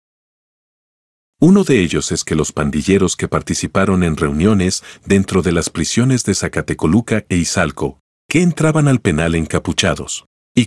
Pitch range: 80-115 Hz